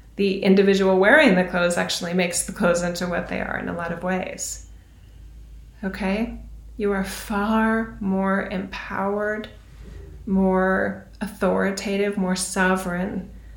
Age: 30-49